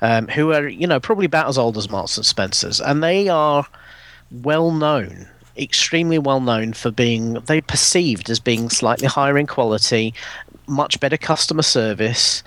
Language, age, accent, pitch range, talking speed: English, 40-59, British, 115-155 Hz, 160 wpm